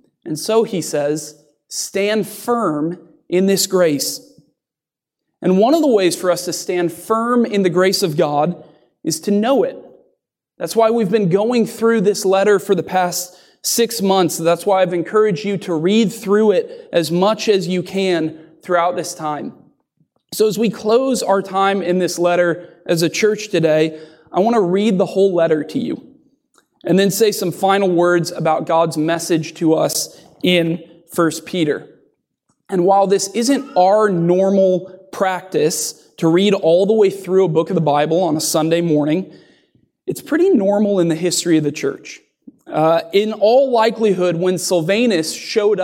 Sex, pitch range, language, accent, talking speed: male, 170-215 Hz, English, American, 175 wpm